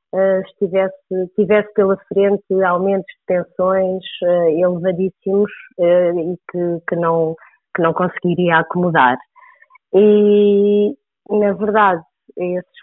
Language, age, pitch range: Portuguese, 30-49, 165-205 Hz